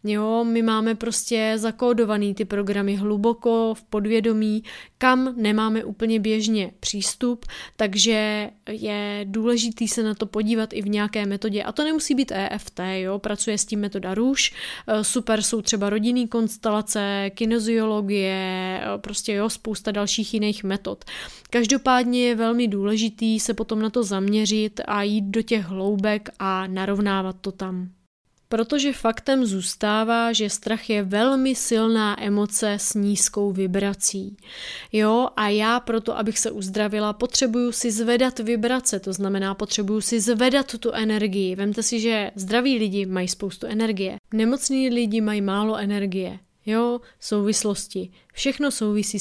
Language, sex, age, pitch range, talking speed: Czech, female, 20-39, 205-230 Hz, 140 wpm